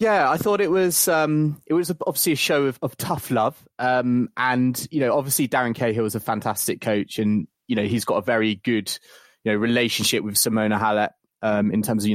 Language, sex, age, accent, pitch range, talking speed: English, male, 20-39, British, 115-140 Hz, 220 wpm